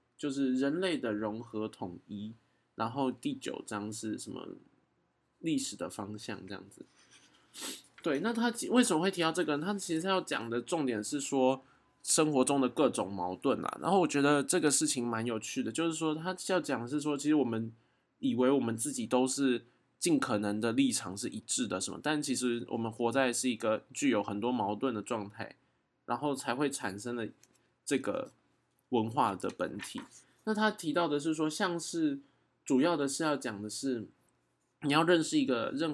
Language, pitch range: Chinese, 110-155 Hz